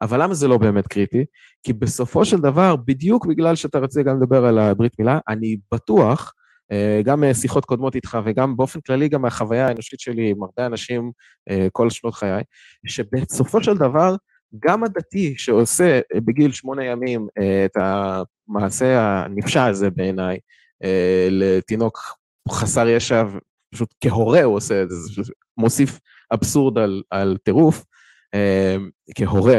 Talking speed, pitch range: 130 wpm, 105-140 Hz